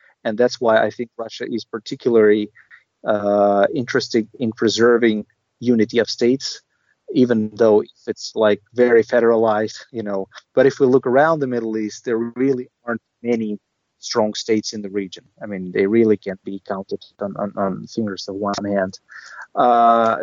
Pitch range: 105-120 Hz